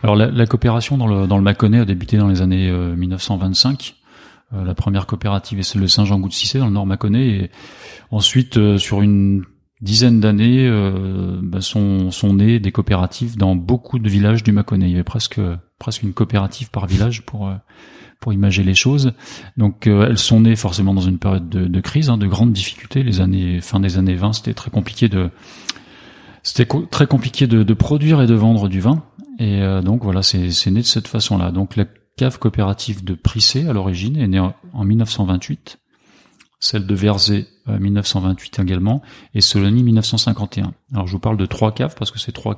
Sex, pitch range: male, 95-115 Hz